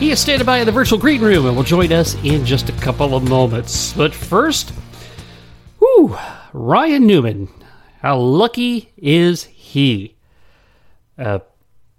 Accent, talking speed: American, 145 wpm